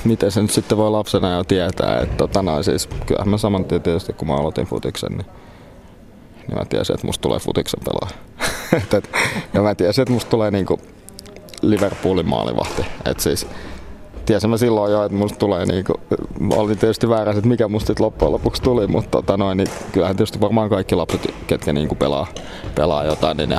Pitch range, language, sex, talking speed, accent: 90-105 Hz, Finnish, male, 180 wpm, native